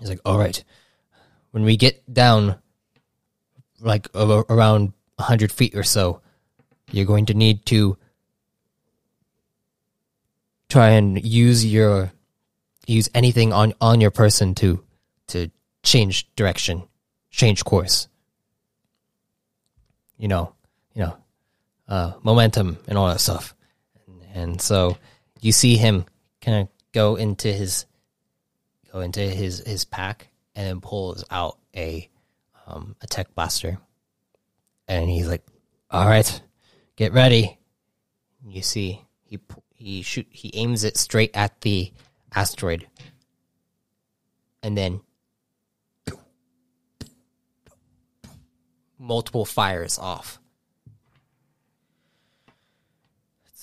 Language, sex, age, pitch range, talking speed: English, male, 20-39, 95-115 Hz, 110 wpm